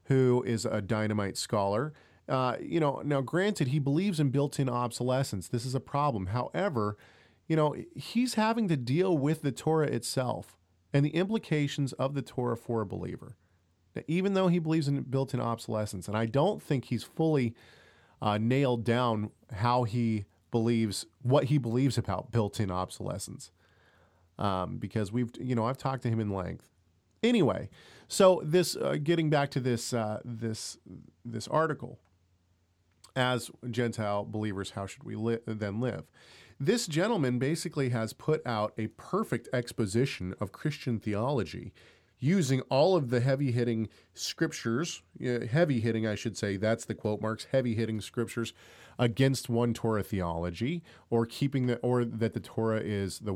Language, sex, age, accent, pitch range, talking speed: English, male, 40-59, American, 105-140 Hz, 160 wpm